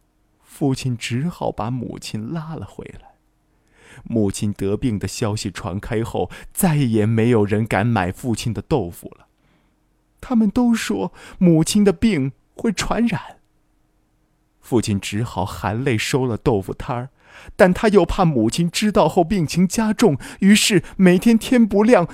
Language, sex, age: Chinese, male, 20-39